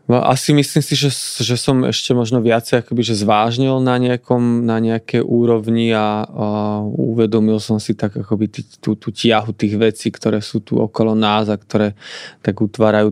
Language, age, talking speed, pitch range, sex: Slovak, 20-39, 165 wpm, 110-120 Hz, male